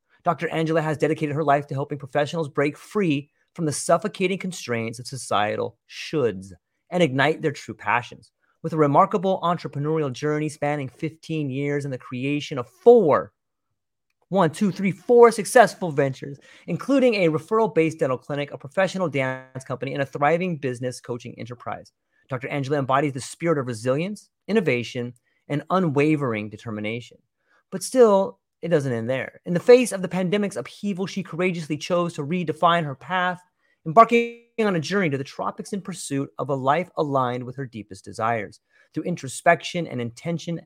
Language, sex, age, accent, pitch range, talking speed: English, male, 30-49, American, 130-180 Hz, 160 wpm